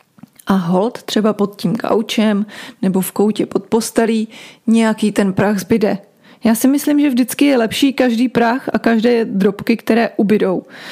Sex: female